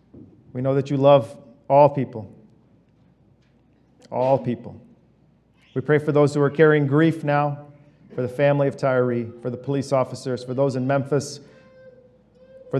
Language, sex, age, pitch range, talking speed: English, male, 40-59, 120-145 Hz, 150 wpm